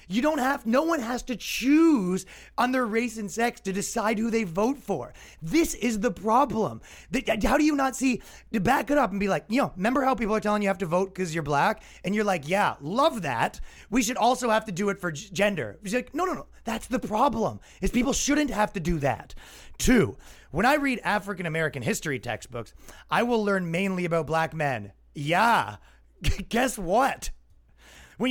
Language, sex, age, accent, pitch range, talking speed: English, male, 30-49, American, 160-245 Hz, 210 wpm